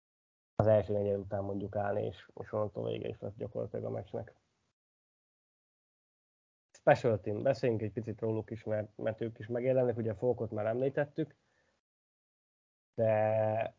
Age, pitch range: 20-39, 110-125 Hz